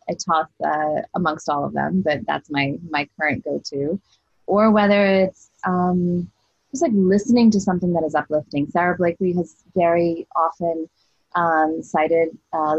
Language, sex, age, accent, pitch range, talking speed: English, female, 20-39, American, 155-190 Hz, 155 wpm